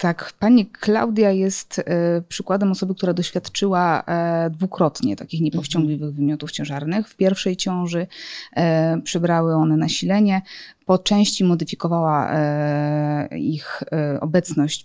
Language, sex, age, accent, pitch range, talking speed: Polish, female, 20-39, native, 160-195 Hz, 95 wpm